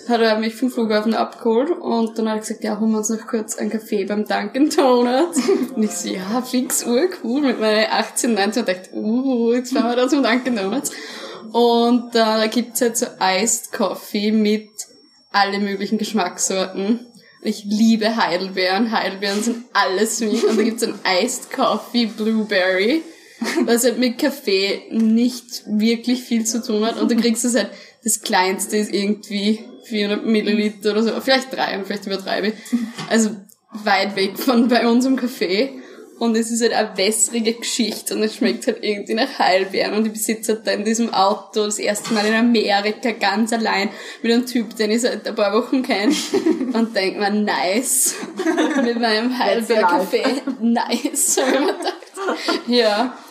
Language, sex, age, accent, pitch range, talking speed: German, female, 20-39, German, 210-245 Hz, 175 wpm